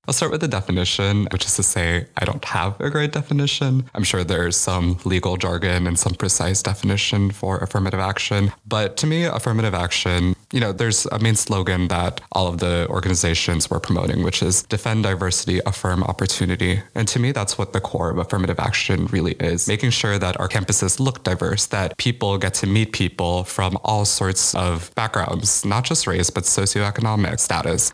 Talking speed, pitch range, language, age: 190 wpm, 90-110 Hz, English, 20-39